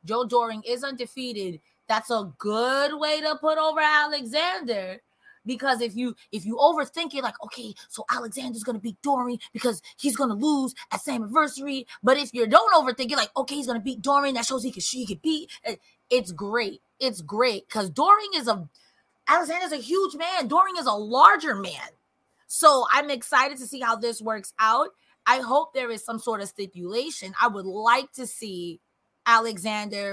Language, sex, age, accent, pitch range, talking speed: English, female, 20-39, American, 210-275 Hz, 190 wpm